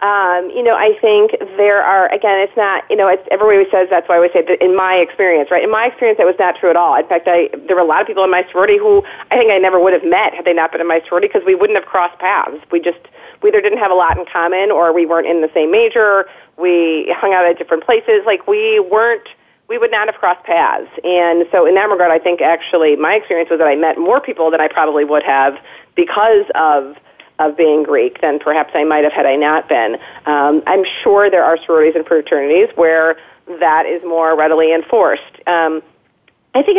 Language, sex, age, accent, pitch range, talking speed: English, female, 40-59, American, 165-230 Hz, 245 wpm